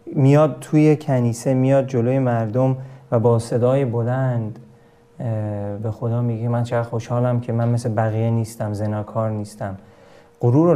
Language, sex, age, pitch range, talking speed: Persian, male, 30-49, 115-140 Hz, 140 wpm